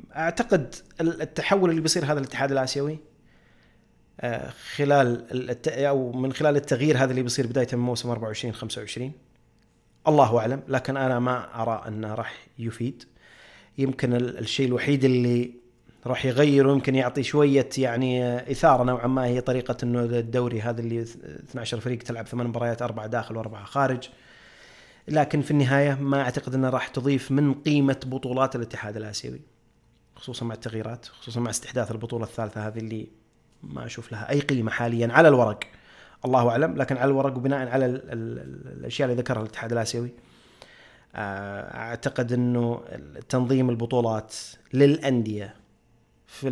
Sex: male